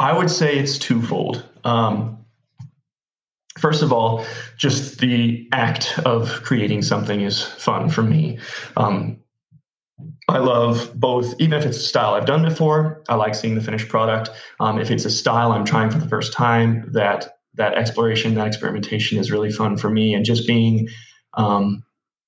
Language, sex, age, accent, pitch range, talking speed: English, male, 20-39, American, 110-130 Hz, 165 wpm